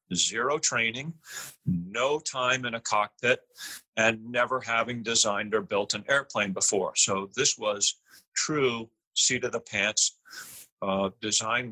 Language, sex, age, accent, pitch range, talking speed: English, male, 40-59, American, 105-130 Hz, 115 wpm